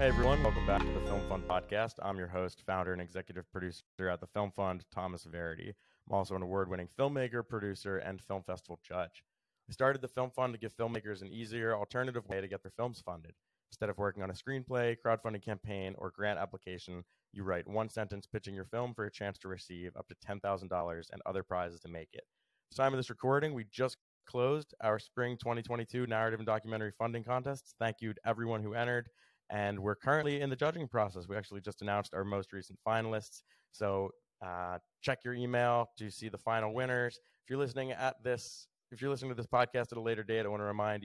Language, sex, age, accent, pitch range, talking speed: English, male, 20-39, American, 95-120 Hz, 215 wpm